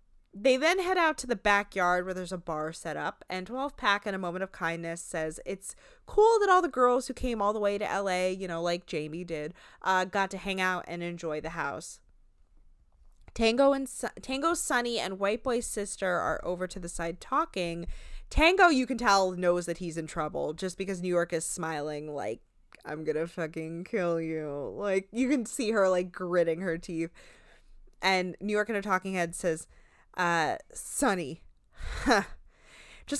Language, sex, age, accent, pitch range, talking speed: English, female, 20-39, American, 175-235 Hz, 190 wpm